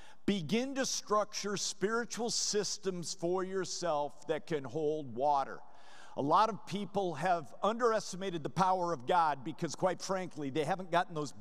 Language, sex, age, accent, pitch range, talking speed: English, male, 50-69, American, 155-210 Hz, 145 wpm